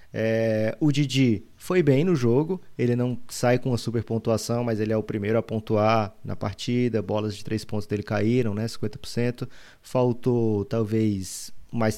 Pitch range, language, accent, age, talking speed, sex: 110-125 Hz, Portuguese, Brazilian, 20-39, 170 wpm, male